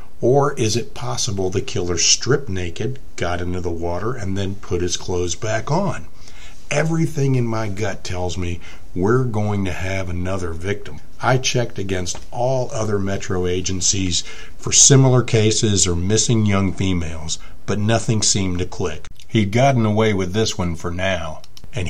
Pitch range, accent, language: 90-115 Hz, American, English